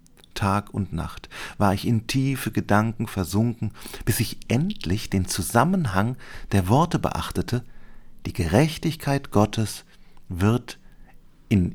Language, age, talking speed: German, 40-59, 110 wpm